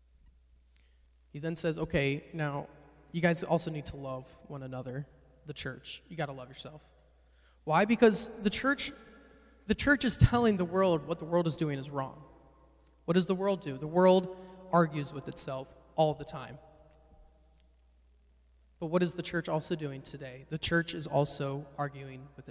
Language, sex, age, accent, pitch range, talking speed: English, male, 20-39, American, 130-175 Hz, 170 wpm